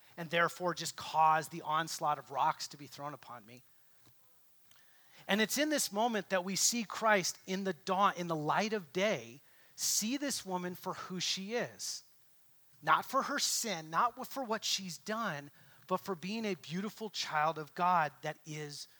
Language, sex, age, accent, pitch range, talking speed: English, male, 30-49, American, 160-220 Hz, 175 wpm